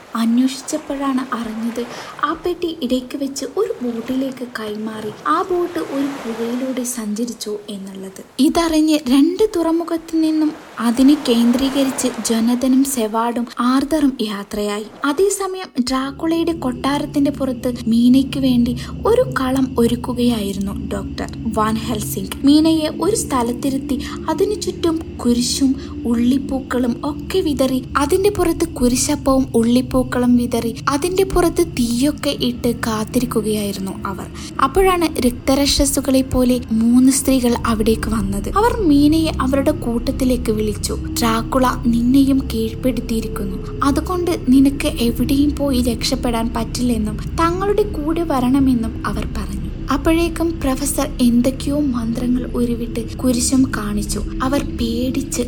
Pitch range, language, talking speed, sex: 235-295 Hz, Malayalam, 100 wpm, female